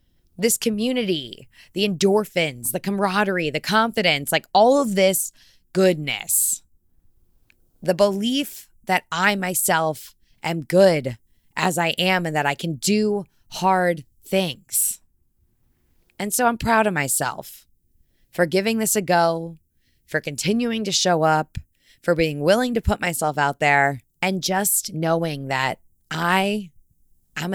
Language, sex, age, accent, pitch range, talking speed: English, female, 20-39, American, 140-190 Hz, 130 wpm